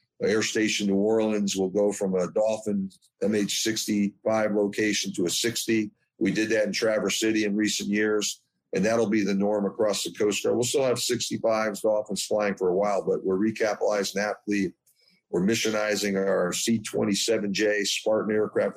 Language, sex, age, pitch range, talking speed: English, male, 50-69, 100-115 Hz, 165 wpm